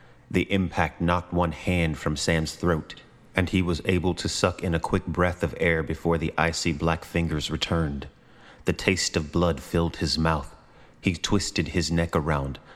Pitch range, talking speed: 80-95 Hz, 180 wpm